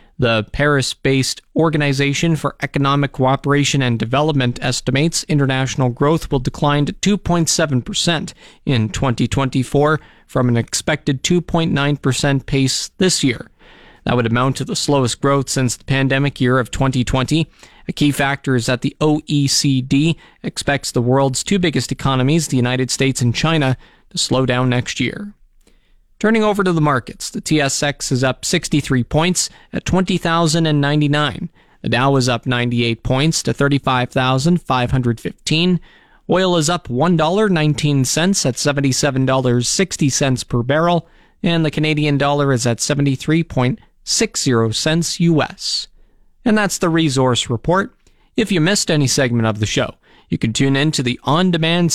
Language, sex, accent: English, male, American